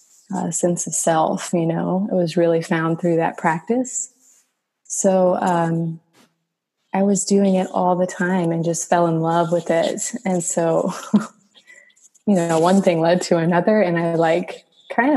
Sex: female